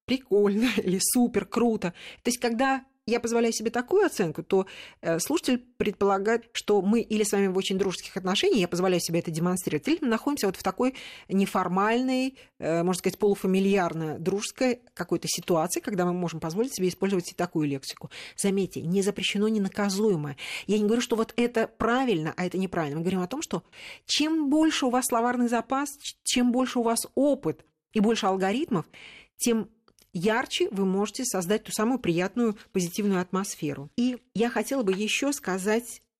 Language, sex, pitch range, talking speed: Russian, female, 180-235 Hz, 165 wpm